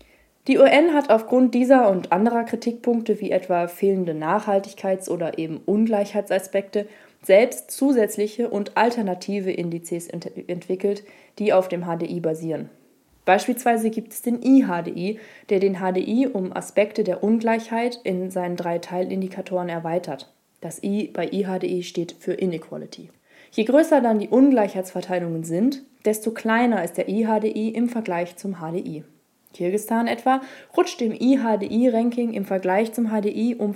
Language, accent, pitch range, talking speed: German, German, 185-235 Hz, 135 wpm